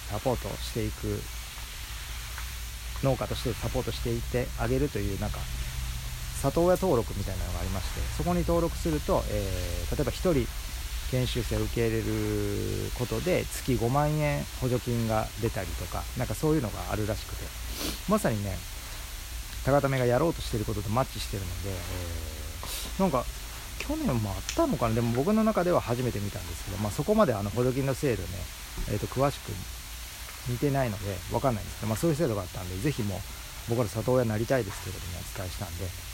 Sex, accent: male, native